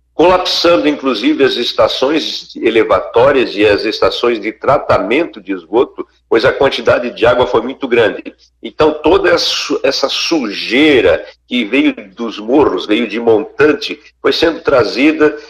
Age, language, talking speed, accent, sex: 60-79, Portuguese, 130 wpm, Brazilian, male